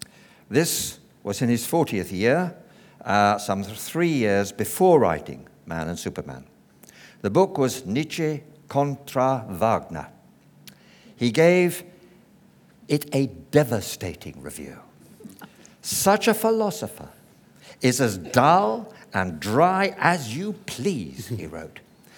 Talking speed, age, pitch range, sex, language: 110 wpm, 60-79, 100-150 Hz, male, English